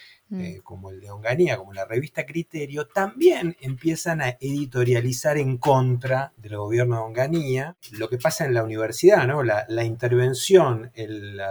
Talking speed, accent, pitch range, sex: 160 wpm, Argentinian, 120-160 Hz, male